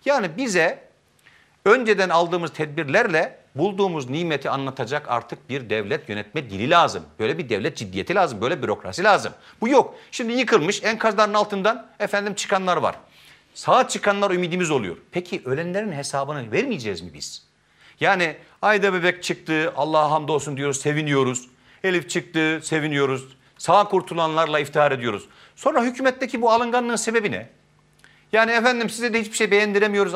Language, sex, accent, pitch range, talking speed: Turkish, male, native, 150-205 Hz, 135 wpm